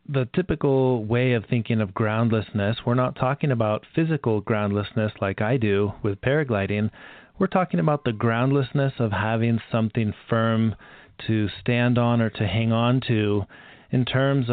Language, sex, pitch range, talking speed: English, male, 105-130 Hz, 155 wpm